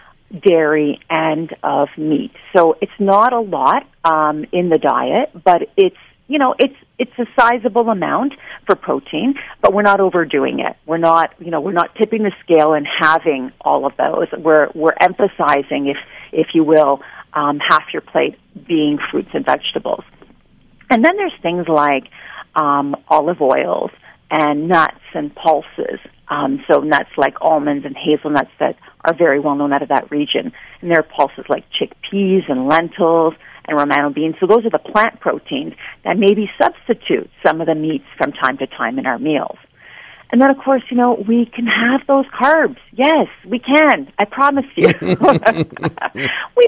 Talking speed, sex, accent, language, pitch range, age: 175 wpm, female, American, English, 155-260 Hz, 40-59